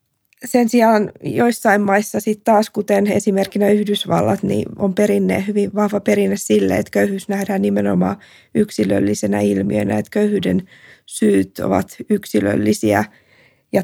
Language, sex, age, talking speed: Finnish, female, 20-39, 120 wpm